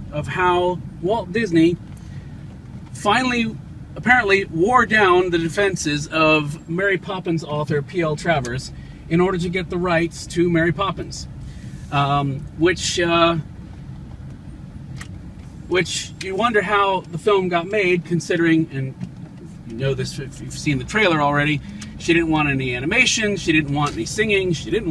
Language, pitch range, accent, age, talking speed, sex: English, 145-190 Hz, American, 40-59, 140 wpm, male